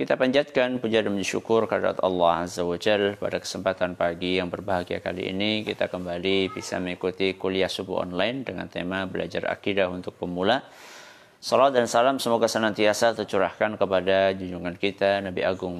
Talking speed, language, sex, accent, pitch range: 150 wpm, Indonesian, male, native, 90-100 Hz